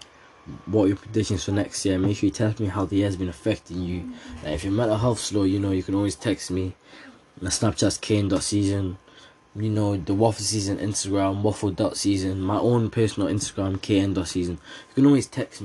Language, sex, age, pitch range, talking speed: English, male, 10-29, 100-135 Hz, 205 wpm